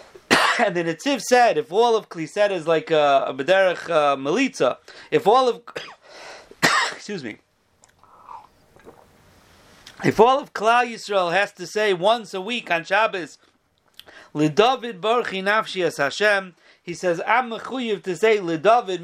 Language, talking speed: English, 140 wpm